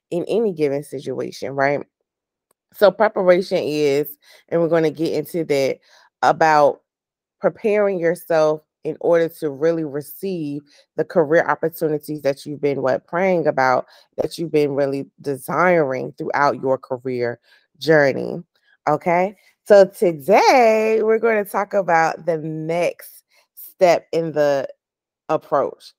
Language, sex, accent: English, female, American